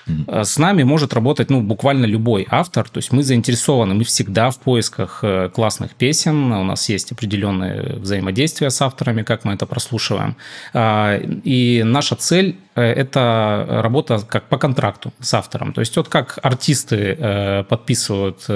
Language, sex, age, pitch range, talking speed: Russian, male, 20-39, 110-140 Hz, 150 wpm